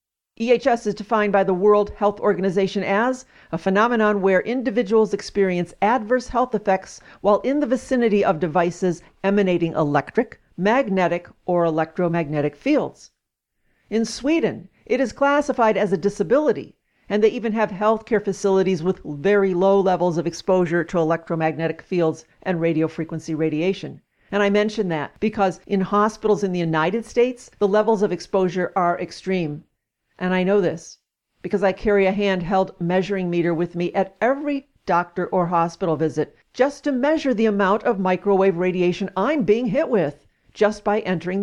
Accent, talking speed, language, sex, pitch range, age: American, 155 wpm, English, female, 175-215 Hz, 50-69